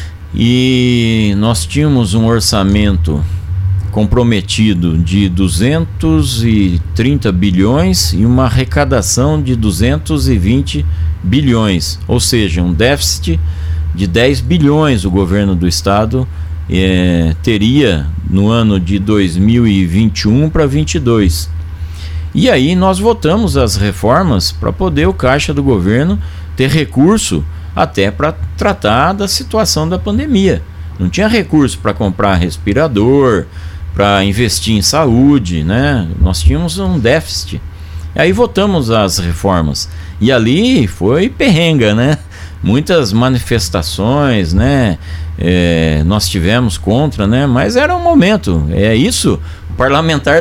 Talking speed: 115 wpm